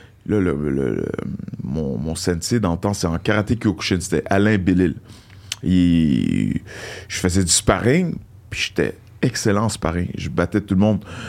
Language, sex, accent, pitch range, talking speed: French, male, French, 95-115 Hz, 160 wpm